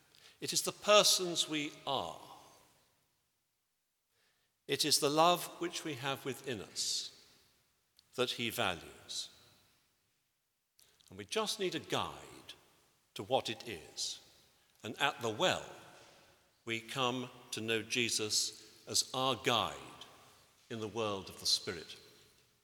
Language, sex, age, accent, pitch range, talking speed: English, male, 50-69, British, 120-160 Hz, 120 wpm